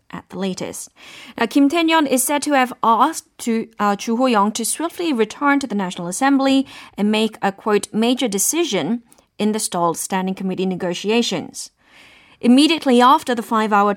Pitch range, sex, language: 205-265 Hz, female, Korean